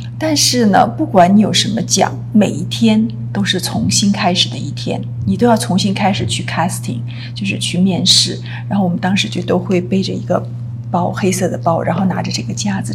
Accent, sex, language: native, female, Chinese